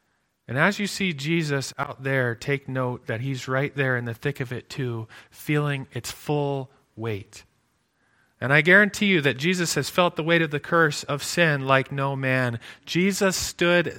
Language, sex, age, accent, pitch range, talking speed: English, male, 40-59, American, 125-155 Hz, 185 wpm